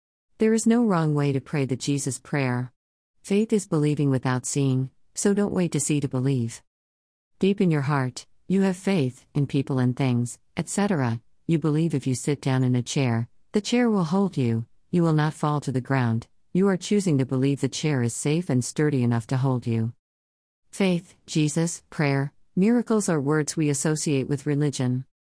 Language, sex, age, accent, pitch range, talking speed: English, female, 50-69, American, 125-170 Hz, 190 wpm